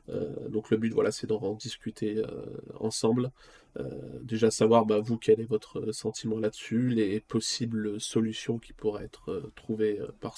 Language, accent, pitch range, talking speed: French, French, 110-125 Hz, 170 wpm